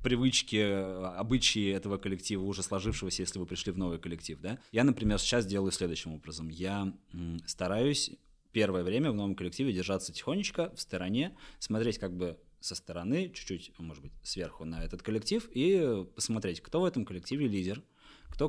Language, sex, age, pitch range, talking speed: Russian, male, 20-39, 90-115 Hz, 160 wpm